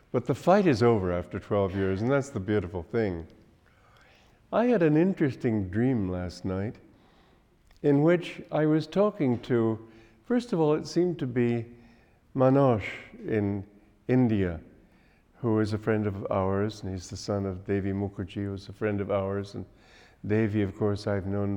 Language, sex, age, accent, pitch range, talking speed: English, male, 50-69, American, 105-150 Hz, 170 wpm